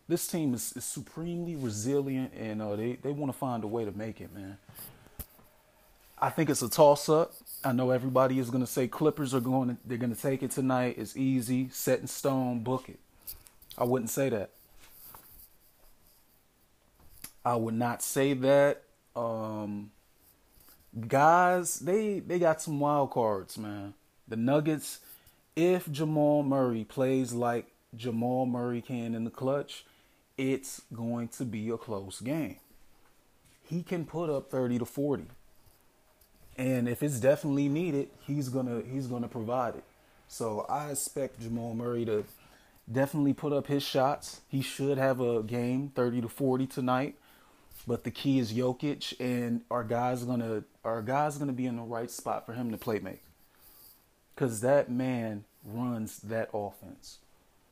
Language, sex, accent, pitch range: English, male, American, 115-140 Hz